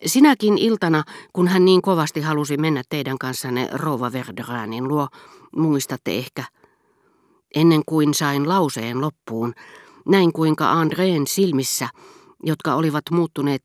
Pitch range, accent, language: 130-170 Hz, native, Finnish